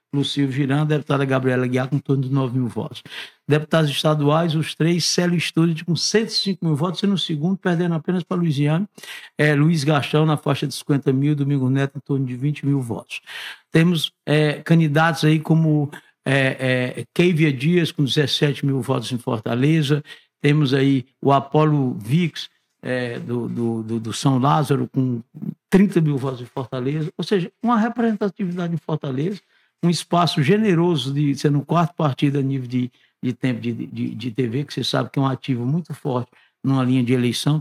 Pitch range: 130-160 Hz